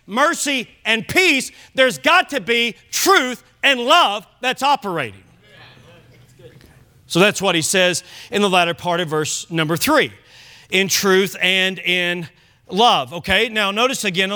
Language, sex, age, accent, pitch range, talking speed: English, male, 40-59, American, 140-230 Hz, 140 wpm